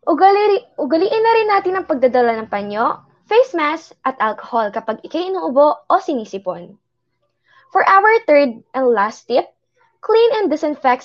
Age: 20-39